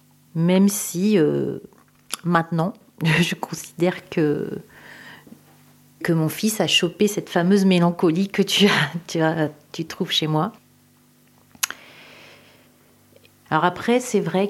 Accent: French